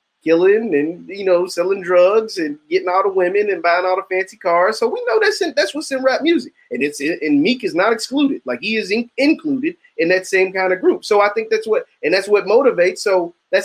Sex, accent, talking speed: male, American, 245 wpm